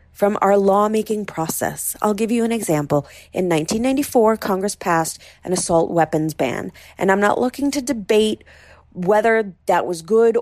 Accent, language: American, English